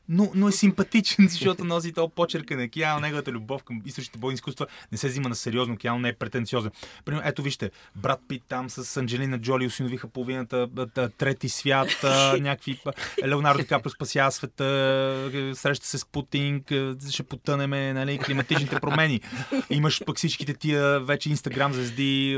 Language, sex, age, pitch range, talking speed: Bulgarian, male, 20-39, 120-145 Hz, 155 wpm